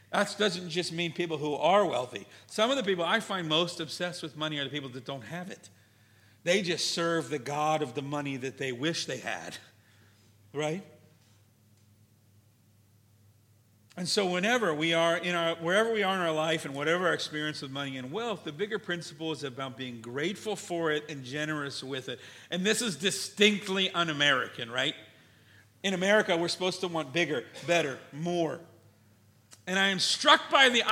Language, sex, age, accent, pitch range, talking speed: English, male, 50-69, American, 135-180 Hz, 180 wpm